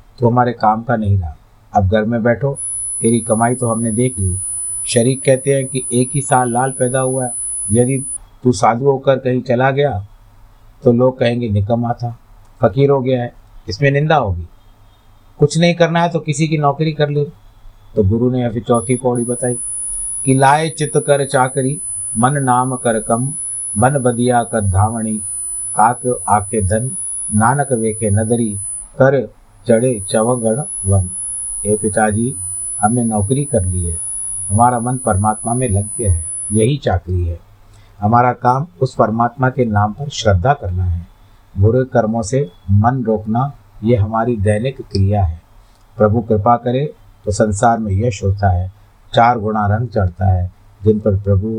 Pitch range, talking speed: 105-125 Hz, 135 wpm